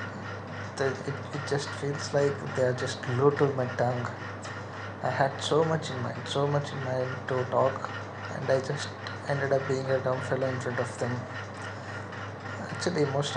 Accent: Indian